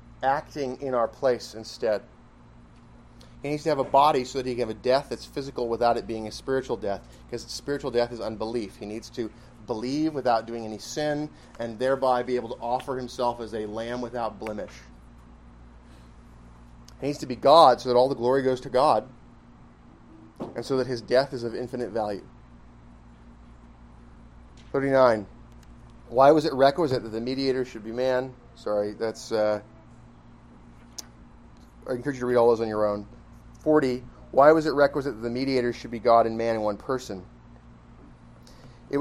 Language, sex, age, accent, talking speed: English, male, 30-49, American, 175 wpm